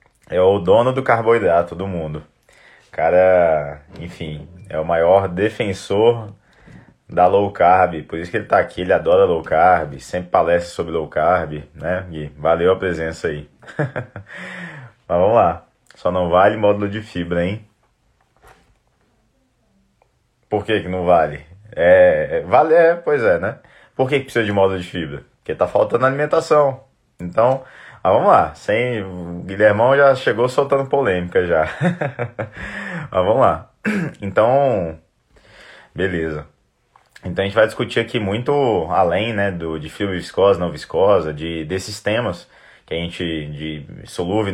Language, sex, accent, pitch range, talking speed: Portuguese, male, Brazilian, 85-115 Hz, 150 wpm